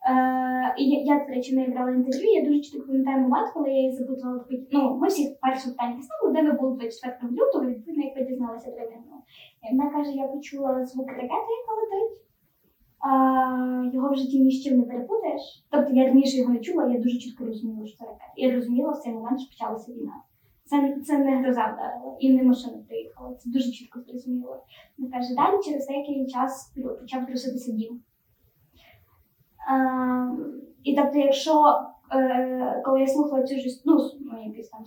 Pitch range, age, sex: 245-275 Hz, 20-39, female